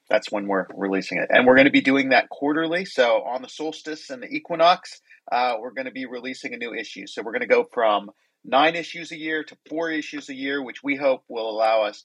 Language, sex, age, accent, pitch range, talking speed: English, male, 40-59, American, 130-170 Hz, 250 wpm